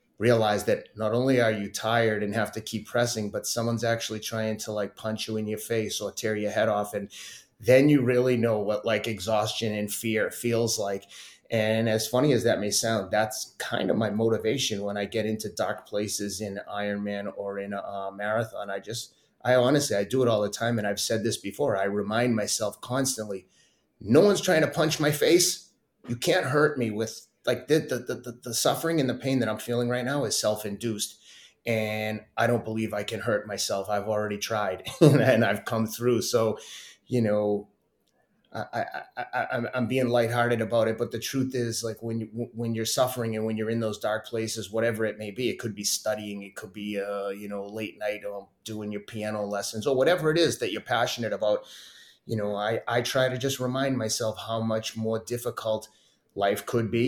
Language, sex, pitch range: English, male, 105-120 Hz